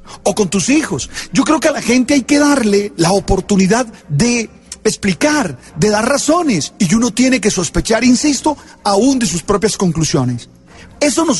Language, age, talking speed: Spanish, 40-59, 175 wpm